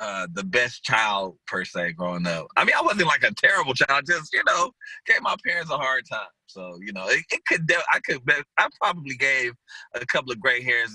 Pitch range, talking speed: 125-185 Hz, 225 wpm